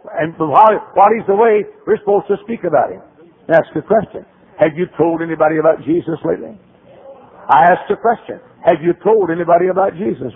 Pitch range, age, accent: 150-210 Hz, 60-79, American